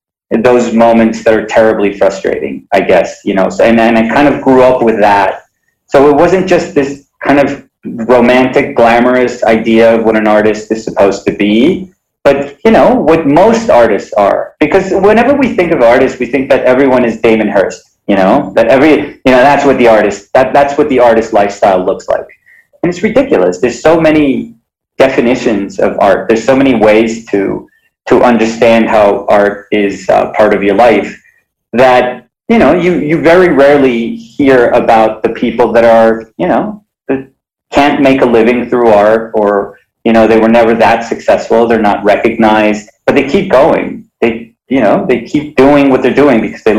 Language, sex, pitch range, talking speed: English, male, 110-140 Hz, 190 wpm